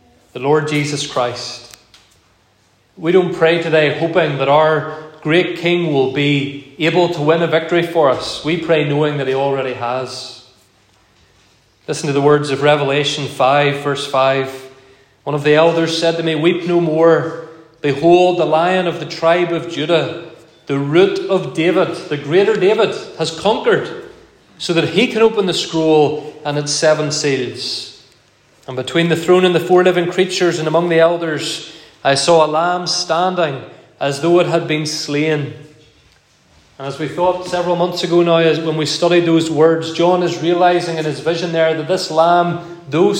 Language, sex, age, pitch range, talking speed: English, male, 30-49, 145-175 Hz, 170 wpm